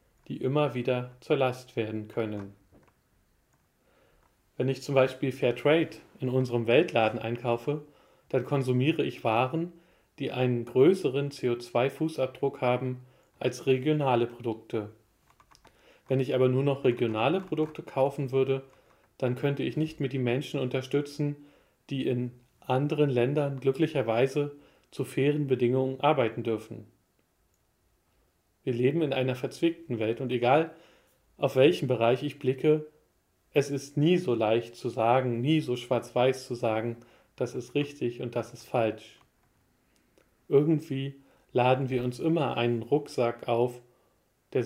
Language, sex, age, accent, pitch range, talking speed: German, male, 40-59, German, 120-140 Hz, 130 wpm